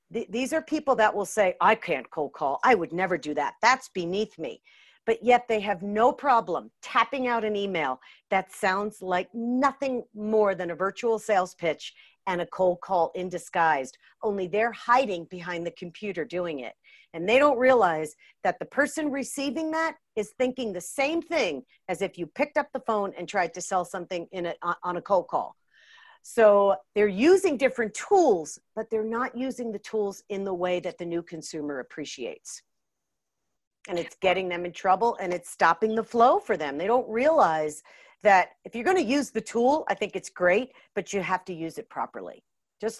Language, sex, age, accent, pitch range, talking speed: English, female, 50-69, American, 180-245 Hz, 190 wpm